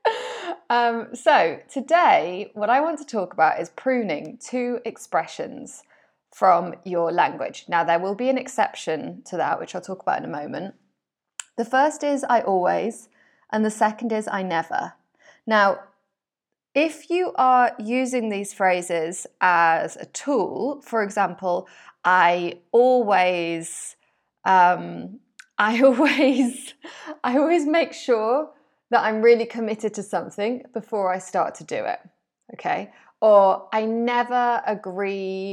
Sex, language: female, English